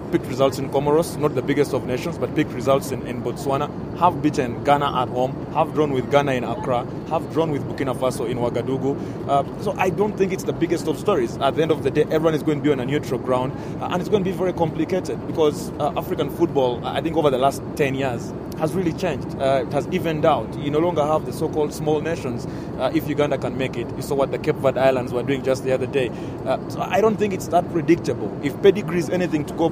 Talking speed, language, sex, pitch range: 250 wpm, English, male, 130-165 Hz